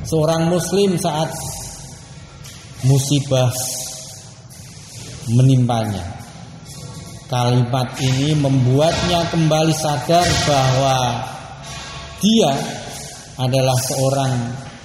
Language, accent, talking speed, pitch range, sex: Indonesian, native, 55 wpm, 130-160 Hz, male